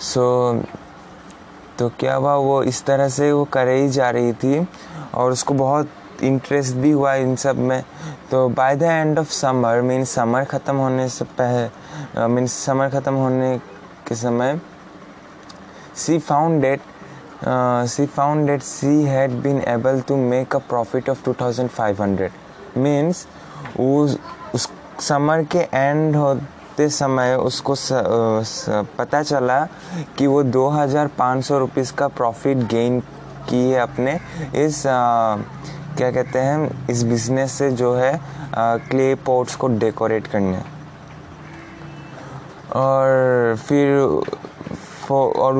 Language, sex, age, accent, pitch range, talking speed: English, male, 20-39, Indian, 125-140 Hz, 120 wpm